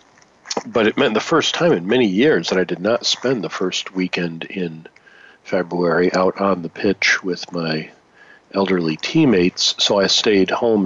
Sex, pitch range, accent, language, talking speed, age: male, 85-100 Hz, American, English, 170 wpm, 40-59